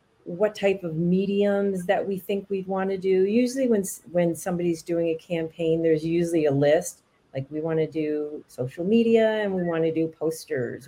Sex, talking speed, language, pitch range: female, 175 wpm, English, 155-195 Hz